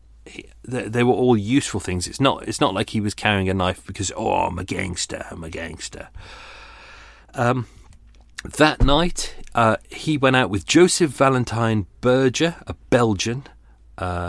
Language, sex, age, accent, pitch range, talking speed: English, male, 30-49, British, 95-125 Hz, 165 wpm